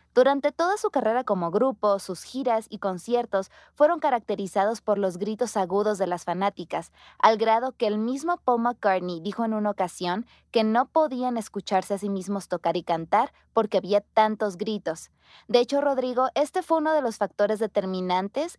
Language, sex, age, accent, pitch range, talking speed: Spanish, female, 20-39, Mexican, 190-245 Hz, 175 wpm